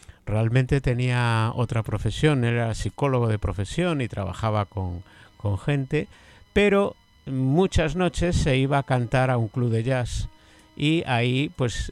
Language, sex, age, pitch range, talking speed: Spanish, male, 50-69, 100-135 Hz, 140 wpm